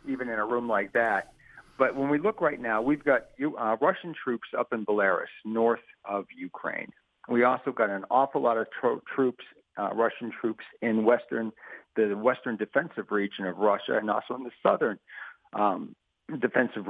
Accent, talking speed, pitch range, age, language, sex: American, 180 wpm, 105-130 Hz, 50-69, English, male